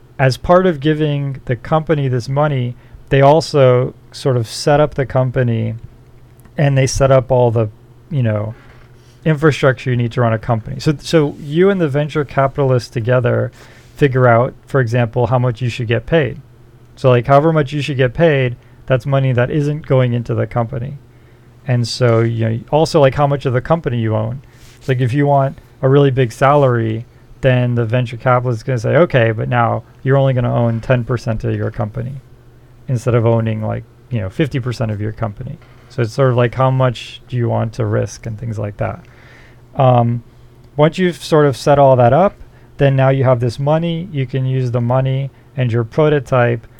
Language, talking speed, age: English, 200 wpm, 40-59